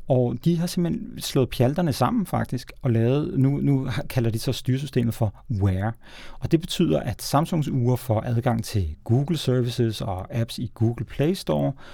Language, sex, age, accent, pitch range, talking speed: Danish, male, 30-49, native, 115-140 Hz, 175 wpm